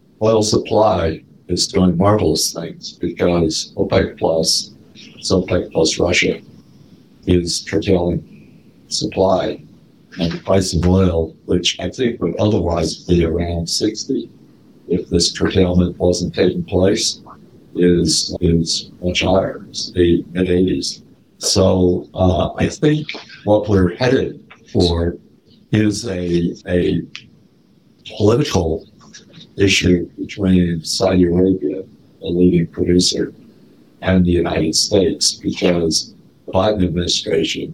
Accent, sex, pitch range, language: American, male, 85-95 Hz, English